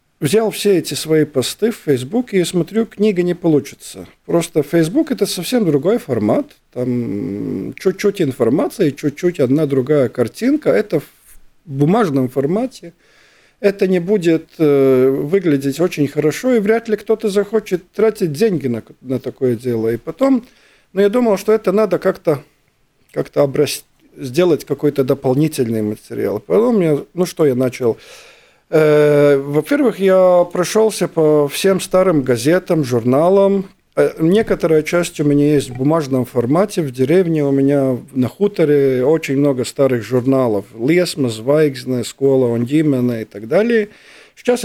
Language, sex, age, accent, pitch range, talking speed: Russian, male, 50-69, native, 135-190 Hz, 130 wpm